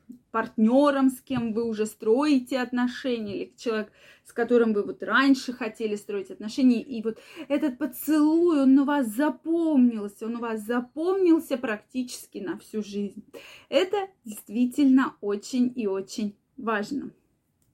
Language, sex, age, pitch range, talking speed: Russian, female, 20-39, 230-310 Hz, 130 wpm